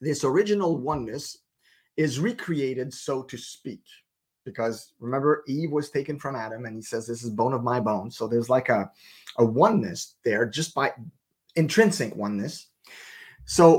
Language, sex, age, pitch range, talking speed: English, male, 30-49, 125-160 Hz, 155 wpm